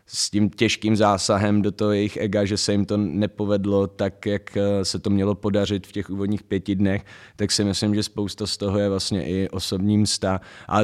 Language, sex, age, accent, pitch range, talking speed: Czech, male, 20-39, native, 95-105 Hz, 205 wpm